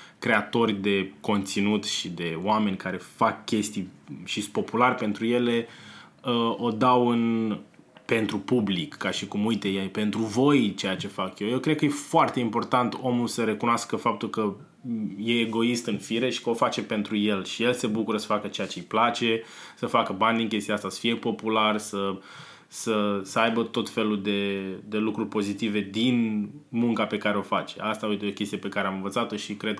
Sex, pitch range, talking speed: male, 105-120 Hz, 195 wpm